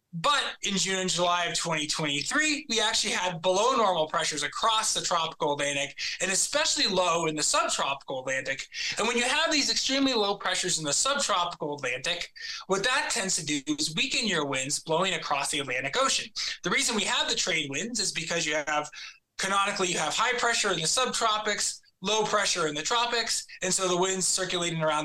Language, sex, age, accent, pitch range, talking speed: English, male, 20-39, American, 155-210 Hz, 190 wpm